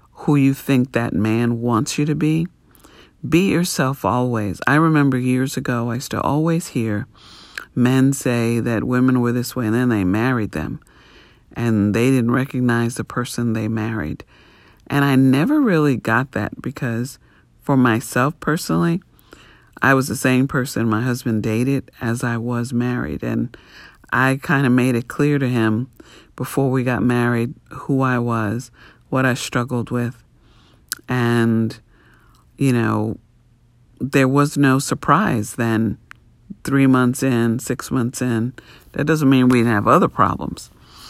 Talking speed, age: 155 wpm, 50-69